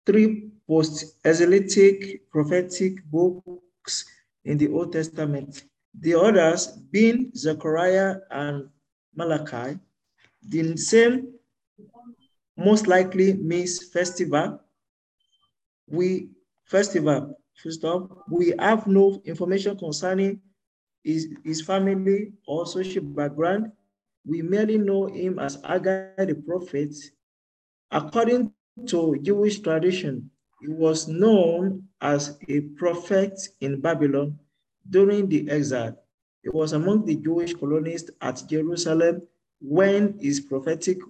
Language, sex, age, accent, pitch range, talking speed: English, male, 50-69, Nigerian, 150-195 Hz, 100 wpm